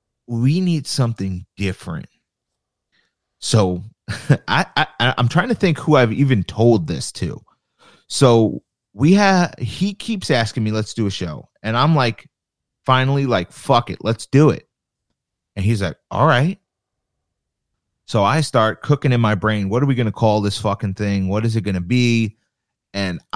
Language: English